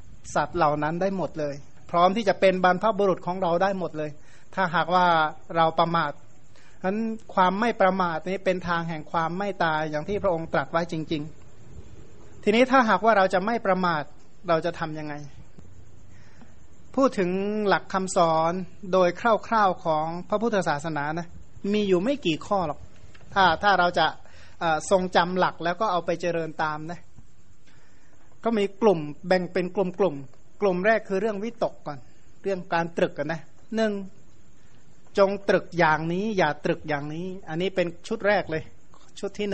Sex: male